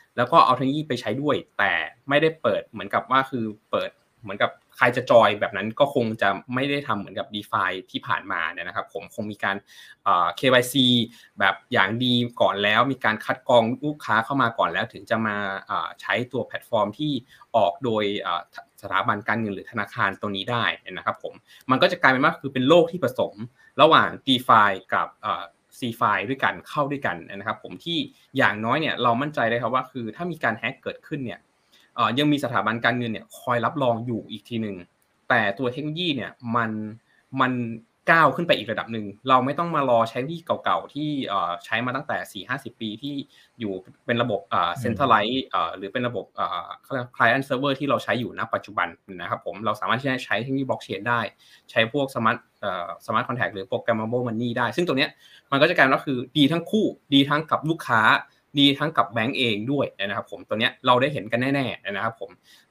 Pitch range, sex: 110-135 Hz, male